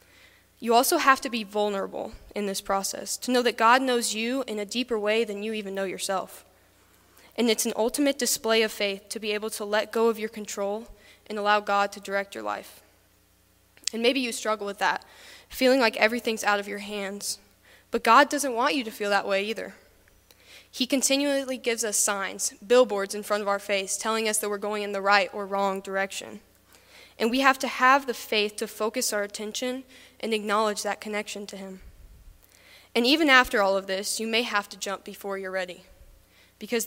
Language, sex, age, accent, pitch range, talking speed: English, female, 10-29, American, 195-235 Hz, 200 wpm